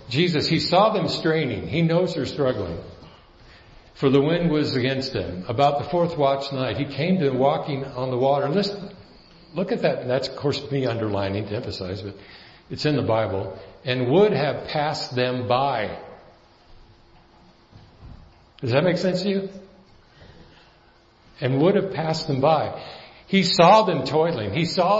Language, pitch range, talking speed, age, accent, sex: English, 115-165 Hz, 165 wpm, 60-79, American, male